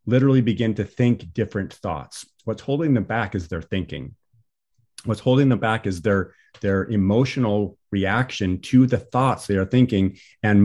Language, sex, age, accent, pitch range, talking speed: English, male, 40-59, American, 105-130 Hz, 165 wpm